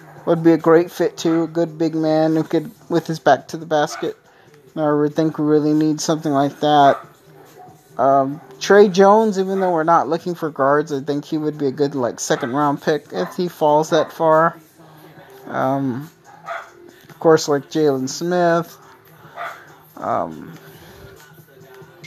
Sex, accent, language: male, American, English